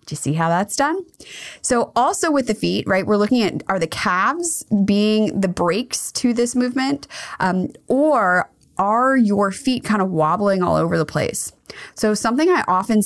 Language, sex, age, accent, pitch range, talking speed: English, female, 20-39, American, 180-230 Hz, 180 wpm